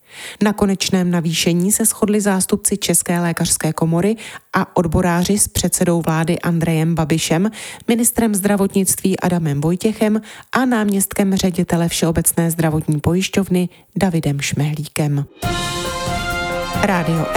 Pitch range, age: 165-210 Hz, 30-49